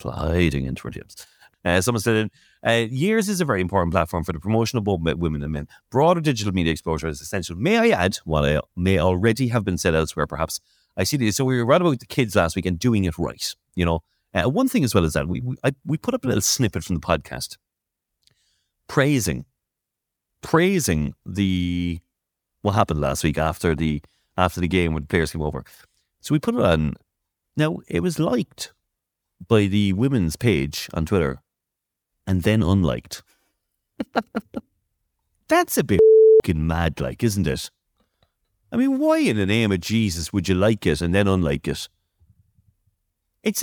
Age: 30-49